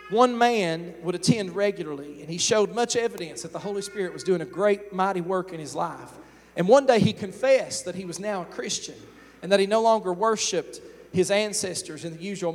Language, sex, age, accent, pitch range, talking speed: English, male, 40-59, American, 170-215 Hz, 215 wpm